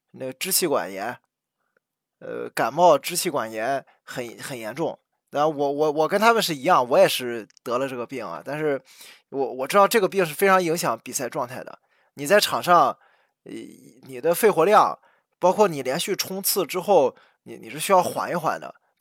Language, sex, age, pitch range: Chinese, male, 20-39, 140-200 Hz